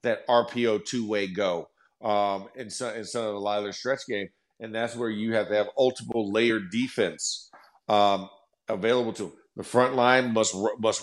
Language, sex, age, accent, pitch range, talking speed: English, male, 50-69, American, 100-120 Hz, 165 wpm